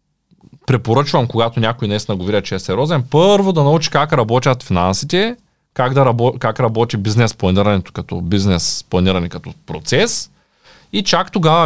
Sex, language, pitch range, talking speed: male, Bulgarian, 100-140 Hz, 140 wpm